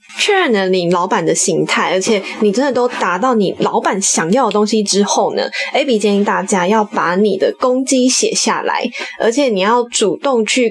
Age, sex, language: 20-39, female, Chinese